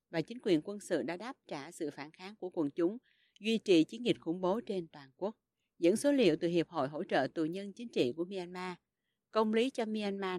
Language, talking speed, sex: Vietnamese, 235 wpm, female